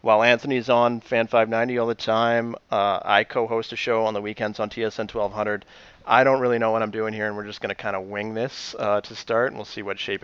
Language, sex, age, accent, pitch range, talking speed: English, male, 30-49, American, 105-120 Hz, 260 wpm